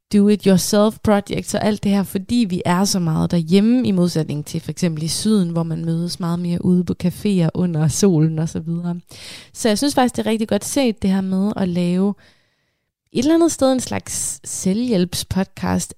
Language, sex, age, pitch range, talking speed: Danish, female, 20-39, 170-215 Hz, 195 wpm